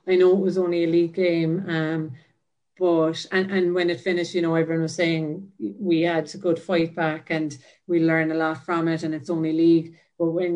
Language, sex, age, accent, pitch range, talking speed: English, female, 30-49, Irish, 160-170 Hz, 220 wpm